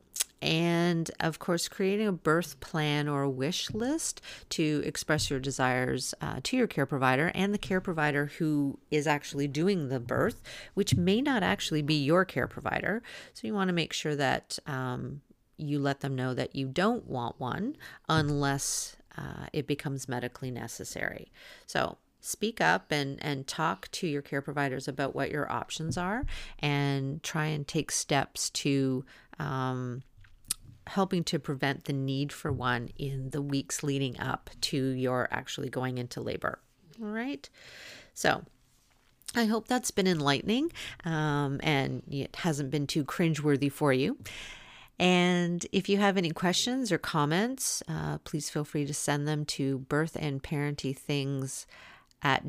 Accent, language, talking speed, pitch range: American, English, 155 wpm, 135-170 Hz